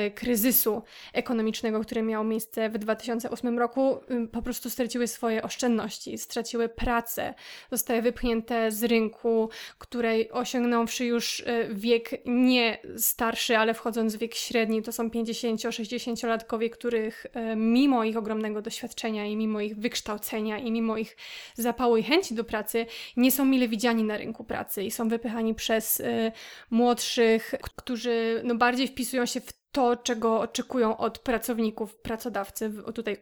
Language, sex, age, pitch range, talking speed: Polish, female, 20-39, 225-245 Hz, 135 wpm